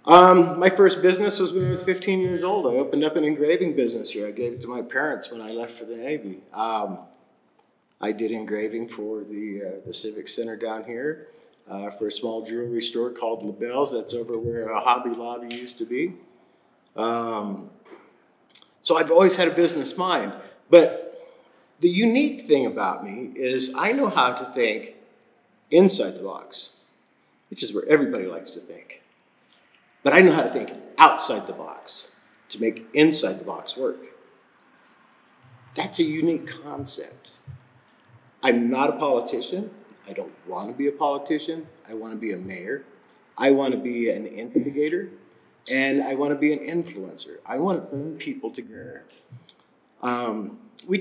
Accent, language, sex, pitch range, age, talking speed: American, English, male, 115-180 Hz, 50-69, 165 wpm